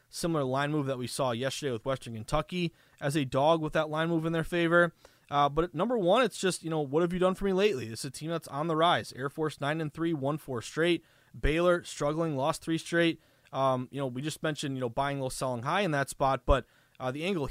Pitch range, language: 135-165 Hz, English